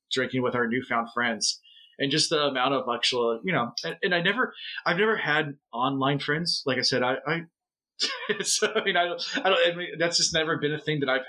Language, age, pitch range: English, 30-49, 125-160 Hz